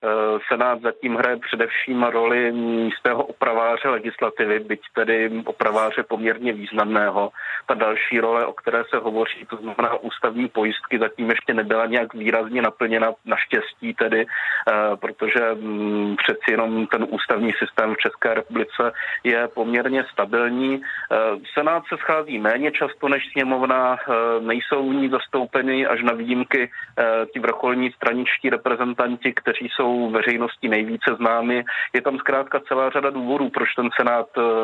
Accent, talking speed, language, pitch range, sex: native, 130 wpm, Czech, 110-125 Hz, male